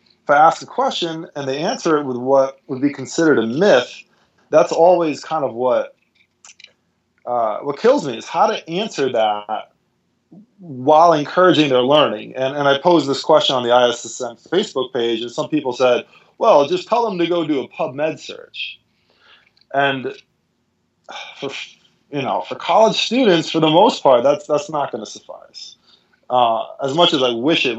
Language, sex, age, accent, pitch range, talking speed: English, male, 20-39, American, 120-155 Hz, 175 wpm